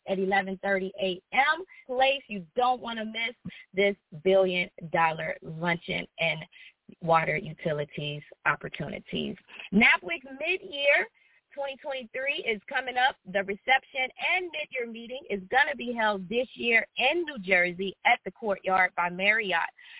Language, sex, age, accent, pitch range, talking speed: English, female, 20-39, American, 195-270 Hz, 125 wpm